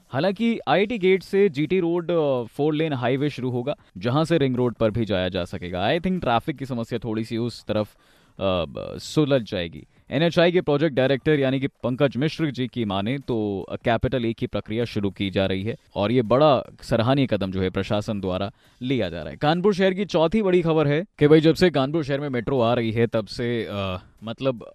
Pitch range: 110-150 Hz